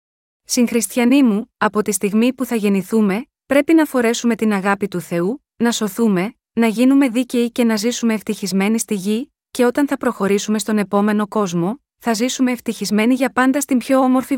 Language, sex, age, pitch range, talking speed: Greek, female, 20-39, 205-245 Hz, 170 wpm